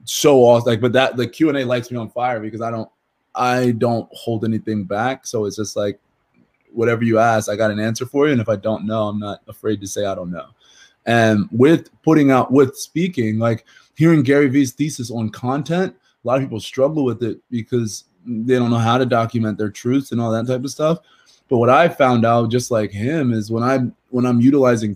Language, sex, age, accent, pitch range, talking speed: English, male, 20-39, American, 110-125 Hz, 230 wpm